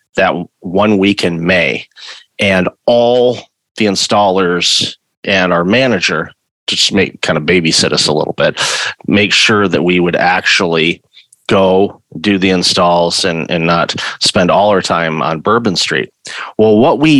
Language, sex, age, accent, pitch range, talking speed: English, male, 30-49, American, 90-110 Hz, 155 wpm